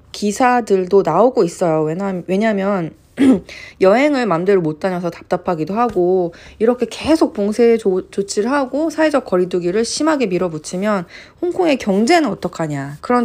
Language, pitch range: Korean, 175-250 Hz